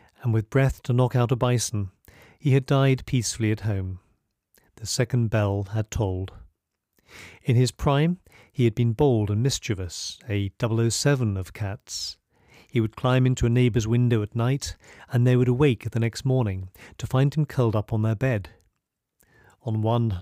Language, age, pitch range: English, 40-59, 105-130 Hz